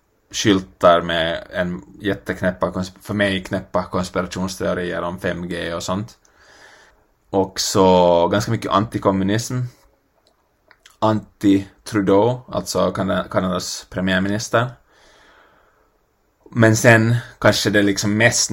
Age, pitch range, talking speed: 20-39, 95-105 Hz, 90 wpm